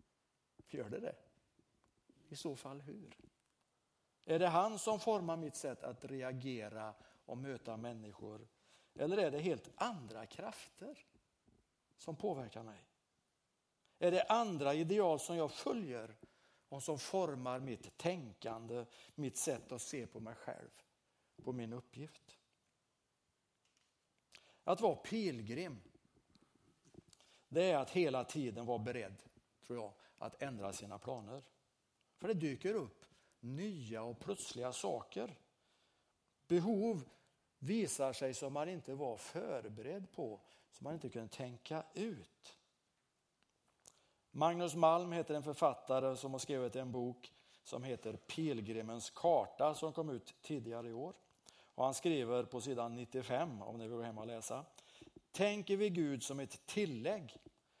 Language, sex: Swedish, male